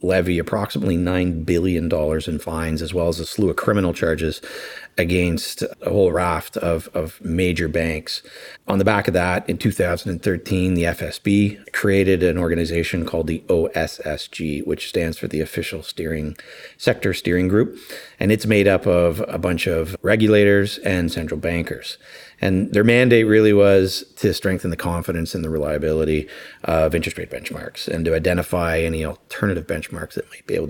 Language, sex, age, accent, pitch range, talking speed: English, male, 30-49, American, 80-95 Hz, 165 wpm